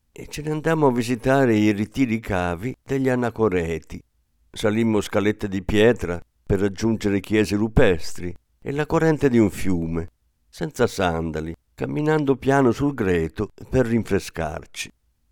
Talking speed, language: 130 wpm, Italian